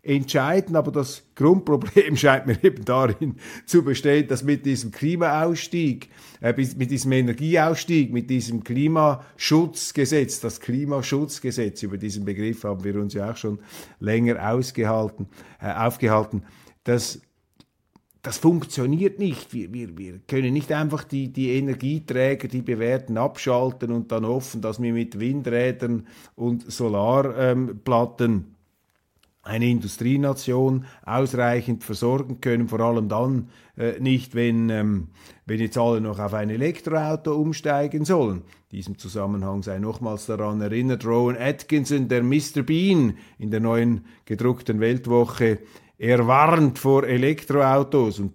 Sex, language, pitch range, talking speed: male, German, 110-140 Hz, 130 wpm